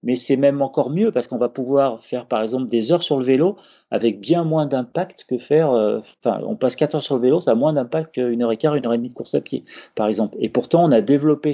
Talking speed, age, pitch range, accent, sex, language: 285 wpm, 30-49, 115-145 Hz, French, male, French